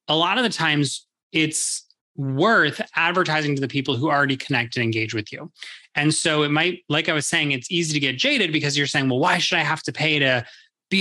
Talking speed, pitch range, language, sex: 235 wpm, 130-160 Hz, English, male